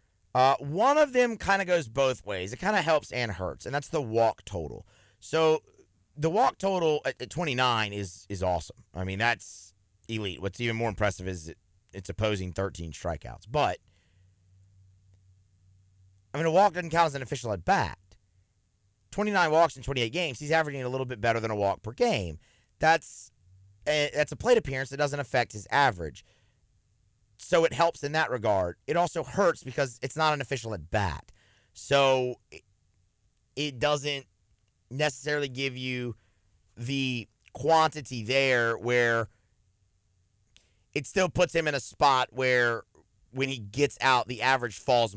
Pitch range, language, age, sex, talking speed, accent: 95-140 Hz, English, 30-49, male, 165 wpm, American